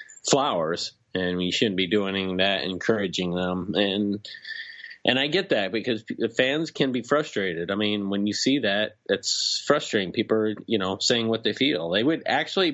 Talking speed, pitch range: 185 wpm, 100-130 Hz